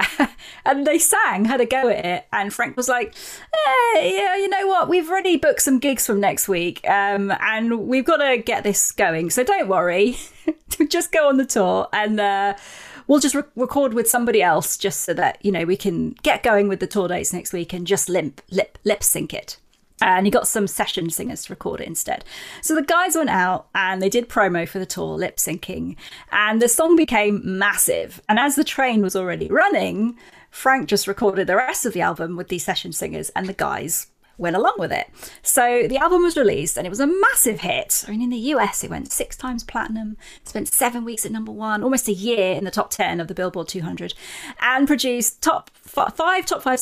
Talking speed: 215 wpm